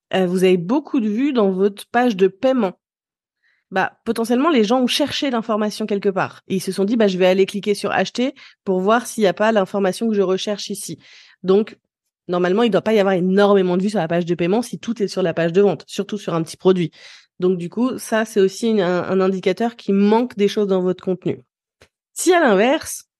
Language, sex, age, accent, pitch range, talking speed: French, female, 20-39, French, 190-240 Hz, 240 wpm